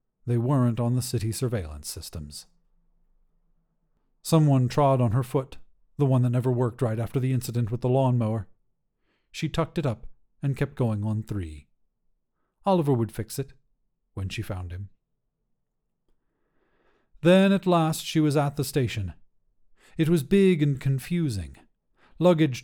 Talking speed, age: 145 wpm, 40-59